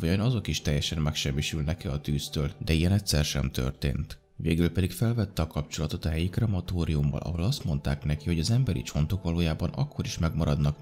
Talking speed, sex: 185 wpm, male